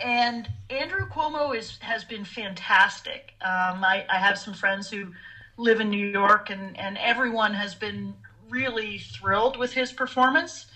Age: 40-59